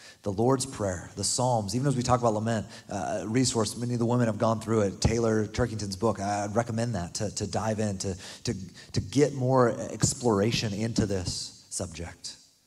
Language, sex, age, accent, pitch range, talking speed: English, male, 30-49, American, 105-135 Hz, 190 wpm